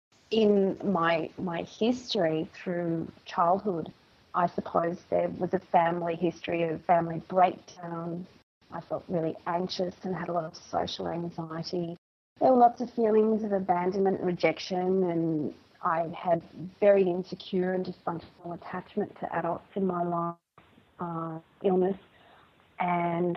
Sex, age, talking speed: female, 30-49, 135 wpm